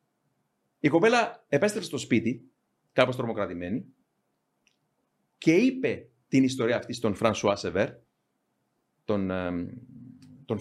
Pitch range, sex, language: 115-145 Hz, male, Greek